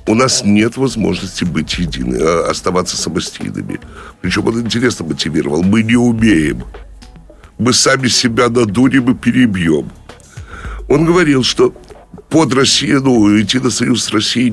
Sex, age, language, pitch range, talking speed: male, 60-79, Russian, 105-150 Hz, 130 wpm